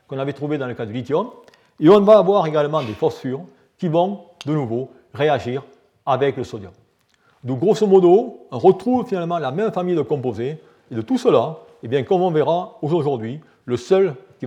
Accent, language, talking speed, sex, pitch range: French, French, 195 wpm, male, 135-190 Hz